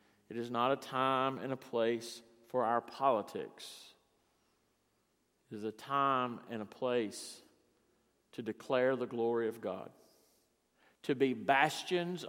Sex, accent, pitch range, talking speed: male, American, 115-150 Hz, 130 wpm